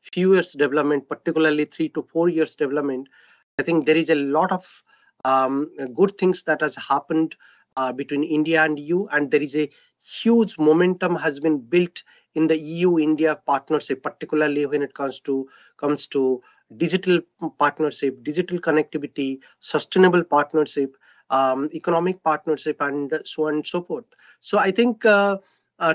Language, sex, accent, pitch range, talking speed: English, male, Indian, 150-180 Hz, 155 wpm